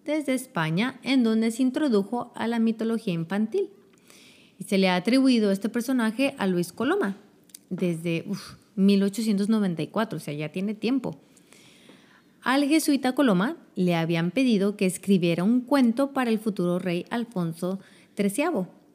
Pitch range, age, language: 180-245 Hz, 30-49, Spanish